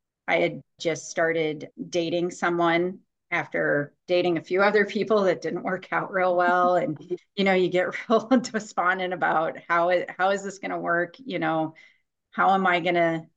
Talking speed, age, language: 180 wpm, 30-49, English